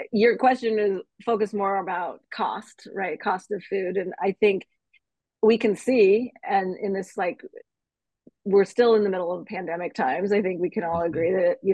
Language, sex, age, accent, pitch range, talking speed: English, female, 30-49, American, 185-225 Hz, 190 wpm